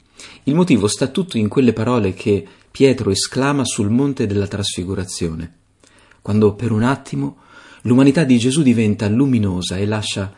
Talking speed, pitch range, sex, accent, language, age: 145 wpm, 95-120 Hz, male, native, Italian, 40-59